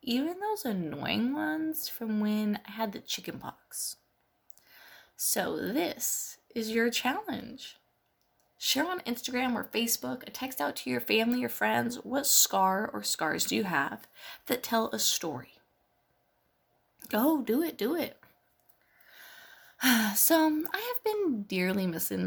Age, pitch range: 20-39, 190-310 Hz